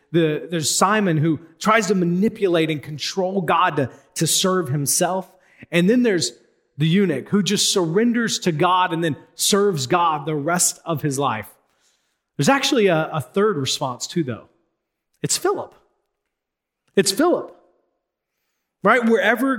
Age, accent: 30-49, American